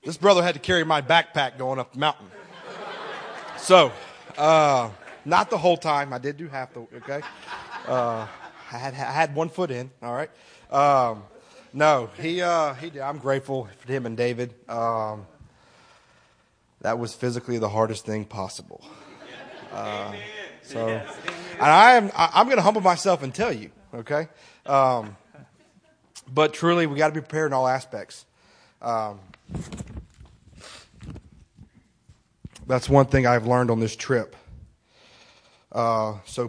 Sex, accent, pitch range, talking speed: male, American, 115-150 Hz, 145 wpm